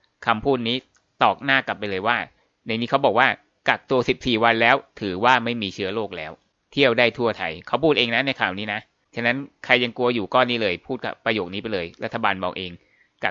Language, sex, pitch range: Thai, male, 110-135 Hz